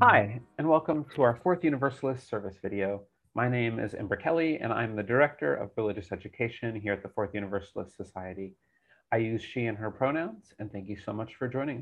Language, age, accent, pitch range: English, 30-49, American, 100-135 Hz